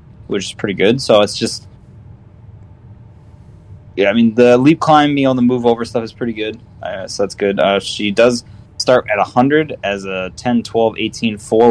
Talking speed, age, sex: 195 wpm, 20-39, male